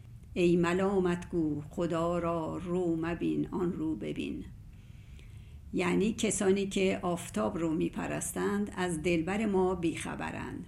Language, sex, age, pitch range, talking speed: Persian, female, 50-69, 155-195 Hz, 105 wpm